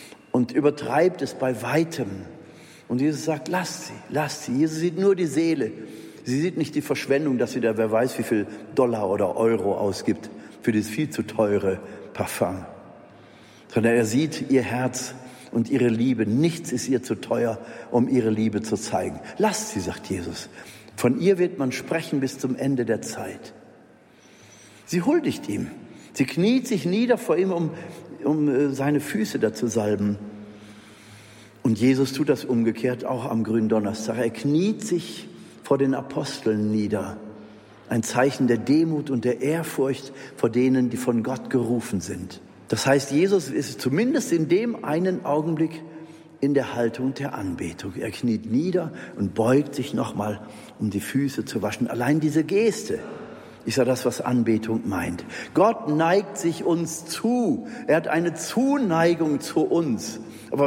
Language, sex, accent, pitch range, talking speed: German, male, German, 115-165 Hz, 165 wpm